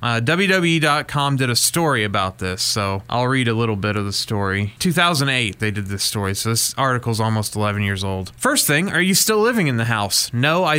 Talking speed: 215 wpm